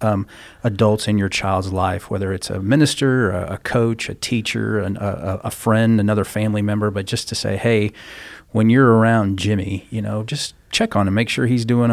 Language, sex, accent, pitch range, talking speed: English, male, American, 100-120 Hz, 205 wpm